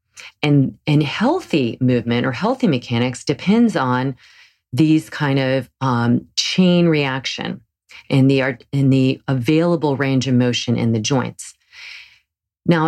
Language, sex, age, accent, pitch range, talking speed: English, female, 40-59, American, 125-155 Hz, 120 wpm